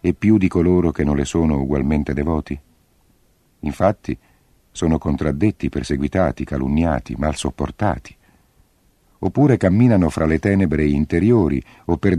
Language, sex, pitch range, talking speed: Italian, male, 75-95 Hz, 125 wpm